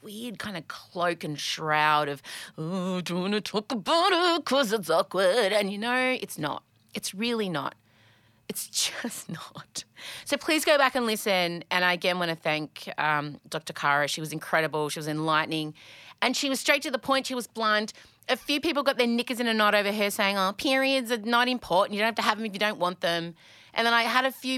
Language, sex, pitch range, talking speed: English, female, 175-285 Hz, 225 wpm